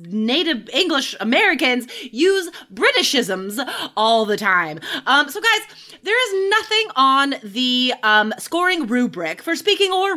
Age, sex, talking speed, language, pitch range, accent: 20-39, female, 130 wpm, English, 225-330 Hz, American